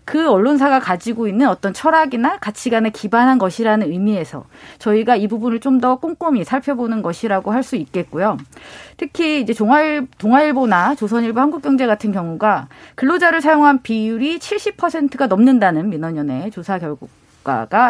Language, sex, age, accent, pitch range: Korean, female, 30-49, native, 210-295 Hz